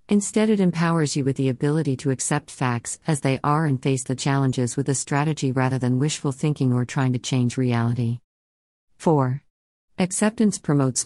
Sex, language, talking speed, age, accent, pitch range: female, English, 175 wpm, 50-69, American, 125-155 Hz